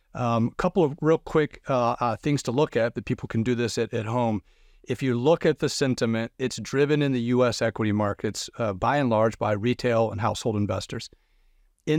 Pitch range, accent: 115-130 Hz, American